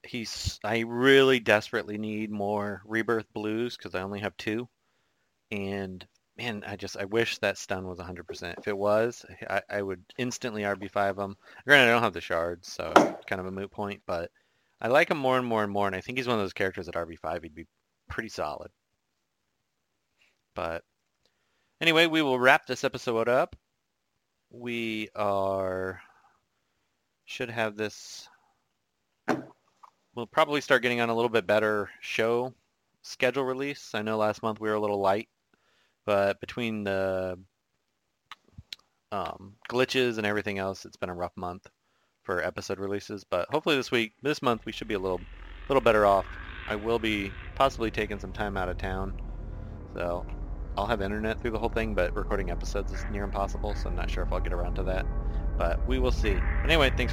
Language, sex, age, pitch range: English, male, 30-49, 95-115 Hz